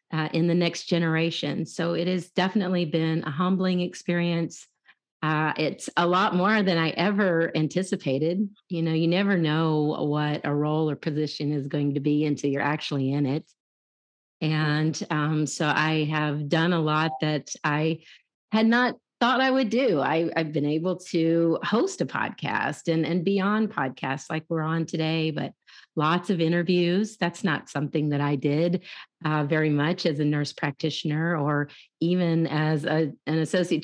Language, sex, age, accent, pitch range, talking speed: English, female, 40-59, American, 145-170 Hz, 165 wpm